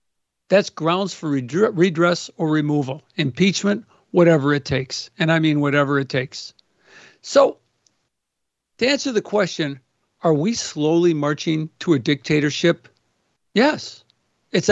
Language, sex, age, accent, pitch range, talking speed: English, male, 60-79, American, 140-180 Hz, 120 wpm